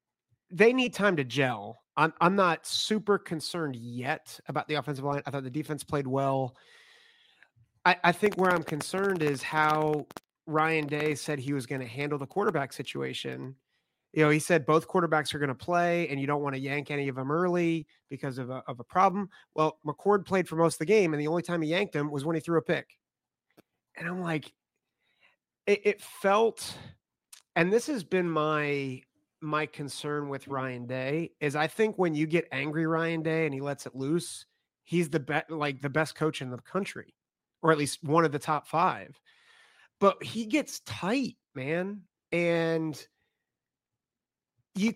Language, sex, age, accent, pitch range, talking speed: English, male, 30-49, American, 140-175 Hz, 190 wpm